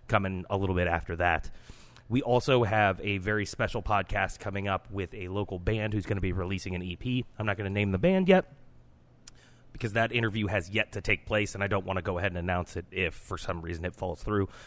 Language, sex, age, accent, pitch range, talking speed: English, male, 30-49, American, 95-115 Hz, 240 wpm